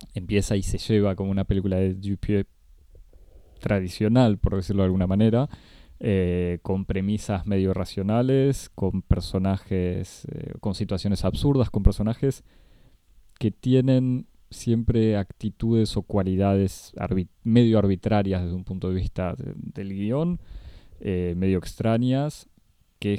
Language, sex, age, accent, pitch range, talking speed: Spanish, male, 20-39, Argentinian, 95-115 Hz, 120 wpm